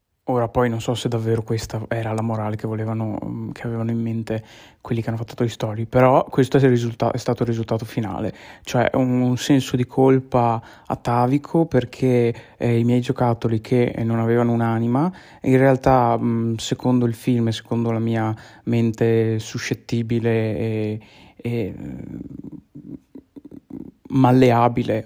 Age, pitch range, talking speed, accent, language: 20-39, 115-125 Hz, 145 wpm, native, Italian